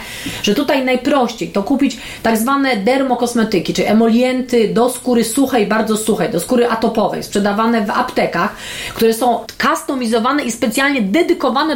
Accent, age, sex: native, 40-59, female